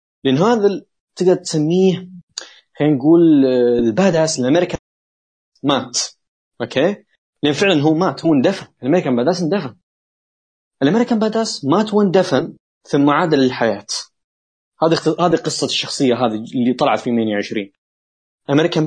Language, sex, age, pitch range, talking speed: Arabic, male, 20-39, 115-160 Hz, 110 wpm